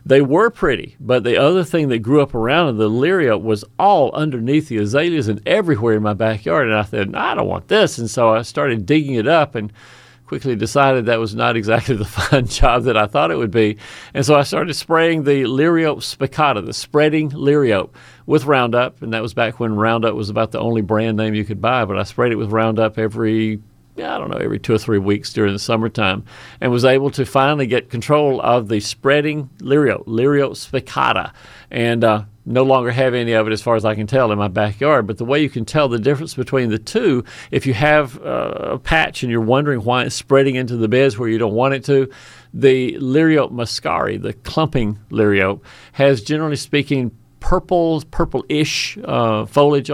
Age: 50-69